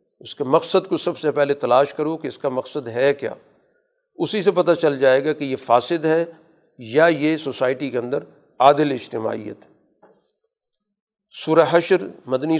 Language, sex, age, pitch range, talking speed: Urdu, male, 50-69, 130-160 Hz, 160 wpm